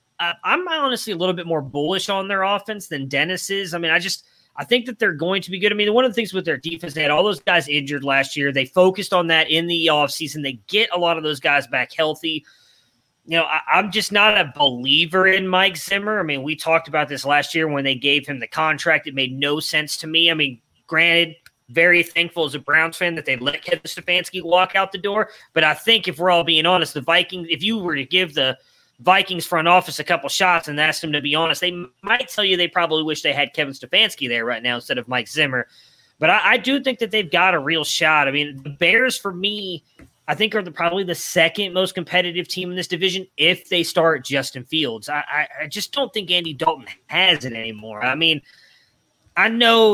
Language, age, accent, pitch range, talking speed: English, 30-49, American, 145-185 Hz, 245 wpm